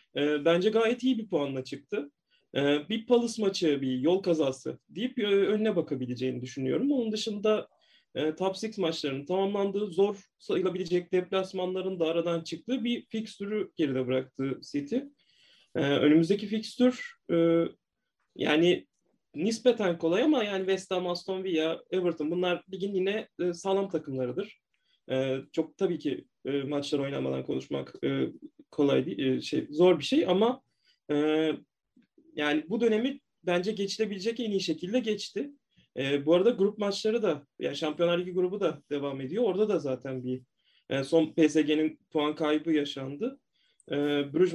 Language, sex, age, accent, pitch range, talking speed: Turkish, male, 30-49, native, 145-205 Hz, 135 wpm